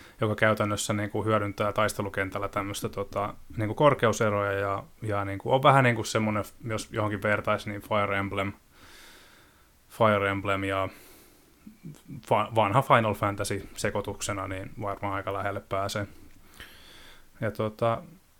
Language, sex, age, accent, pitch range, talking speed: Finnish, male, 20-39, native, 100-110 Hz, 115 wpm